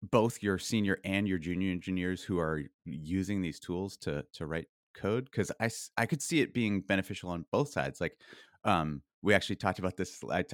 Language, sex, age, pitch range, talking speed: English, male, 30-49, 85-110 Hz, 205 wpm